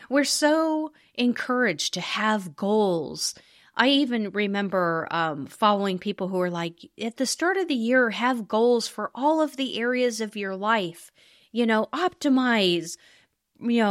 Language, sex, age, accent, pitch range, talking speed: English, female, 30-49, American, 190-280 Hz, 150 wpm